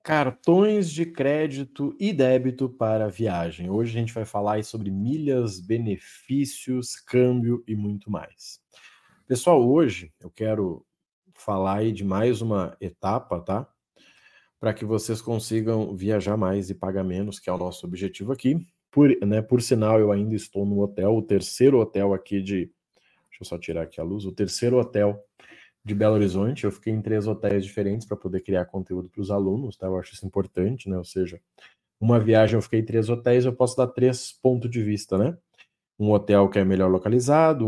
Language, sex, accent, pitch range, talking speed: Portuguese, male, Brazilian, 100-125 Hz, 185 wpm